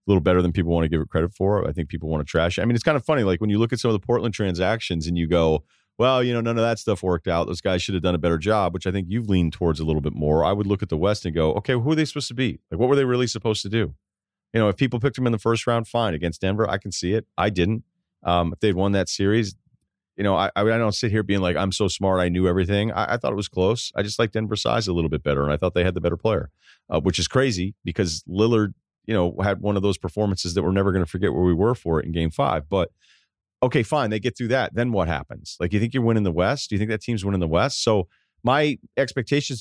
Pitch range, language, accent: 90-115 Hz, English, American